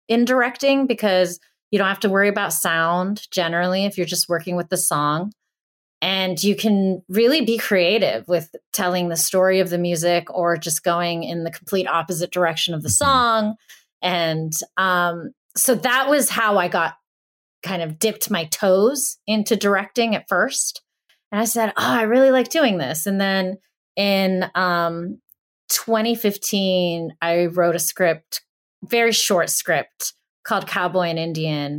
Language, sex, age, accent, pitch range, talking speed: English, female, 30-49, American, 170-215 Hz, 160 wpm